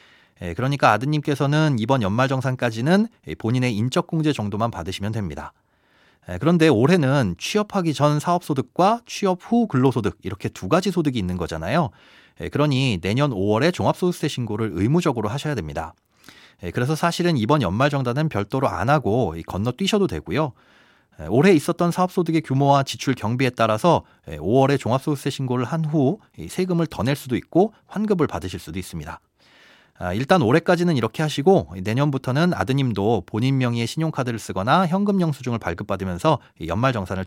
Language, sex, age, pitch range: Korean, male, 30-49, 115-160 Hz